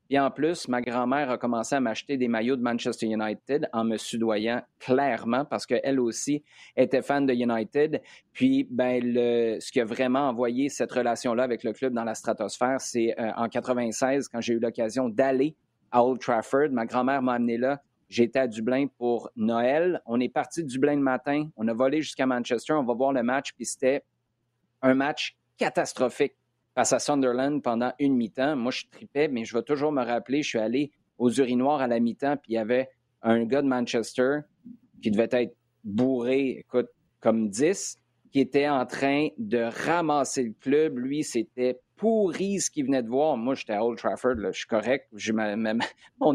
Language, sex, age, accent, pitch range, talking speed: French, male, 30-49, Canadian, 120-140 Hz, 195 wpm